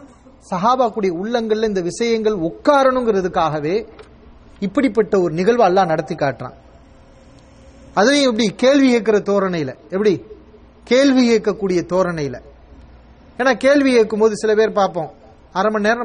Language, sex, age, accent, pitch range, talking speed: English, male, 30-49, Indian, 155-225 Hz, 95 wpm